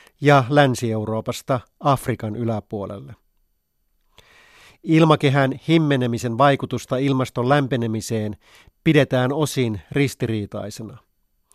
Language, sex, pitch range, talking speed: Finnish, male, 115-140 Hz, 60 wpm